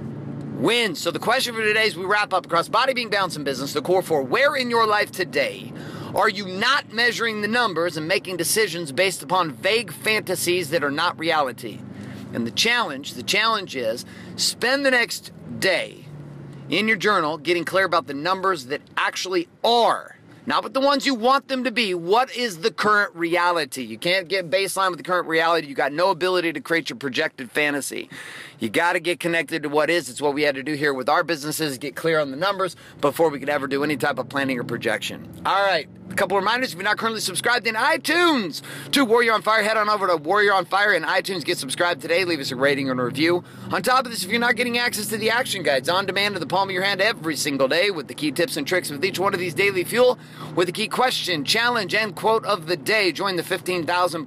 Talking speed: 235 wpm